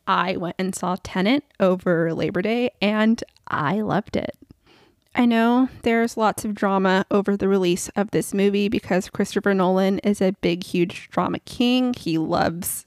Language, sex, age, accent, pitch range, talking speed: English, female, 20-39, American, 180-210 Hz, 165 wpm